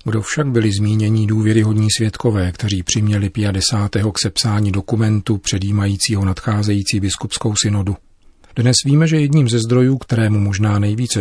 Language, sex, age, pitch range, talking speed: Czech, male, 40-59, 95-115 Hz, 140 wpm